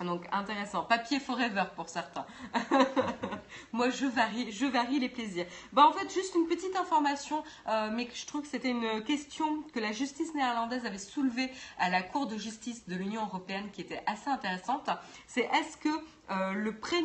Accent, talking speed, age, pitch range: French, 185 wpm, 20-39, 200-270 Hz